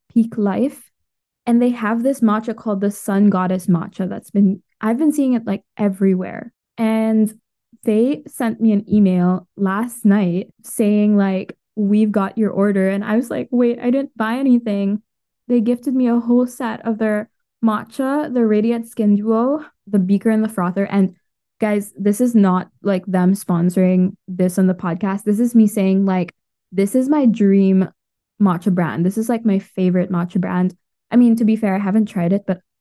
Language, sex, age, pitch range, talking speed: English, female, 10-29, 190-225 Hz, 185 wpm